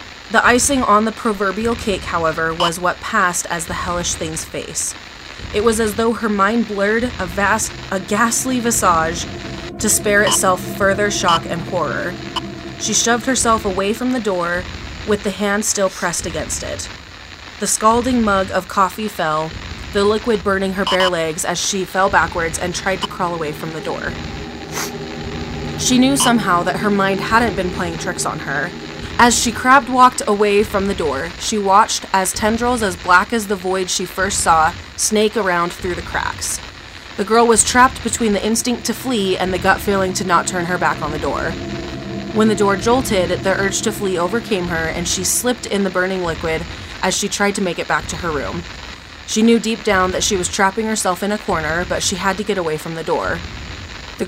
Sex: female